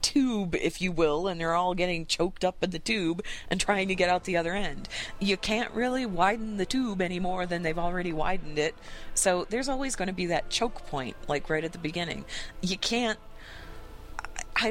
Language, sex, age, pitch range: English, female, 30-49, 140-200 Hz